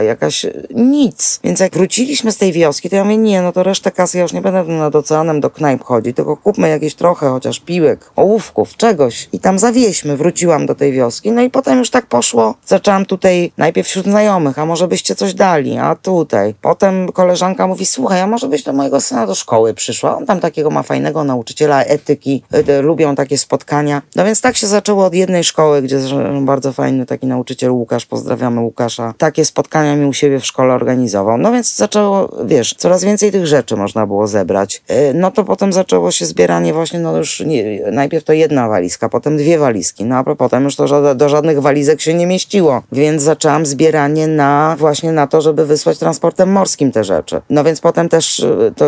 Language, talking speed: Polish, 200 wpm